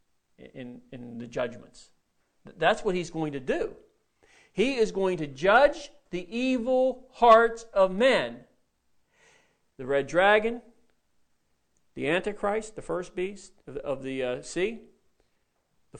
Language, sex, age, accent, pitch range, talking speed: English, male, 40-59, American, 155-235 Hz, 130 wpm